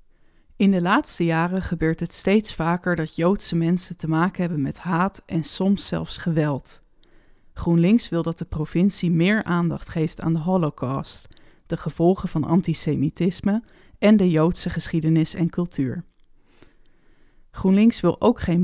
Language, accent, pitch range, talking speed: Dutch, Dutch, 160-195 Hz, 145 wpm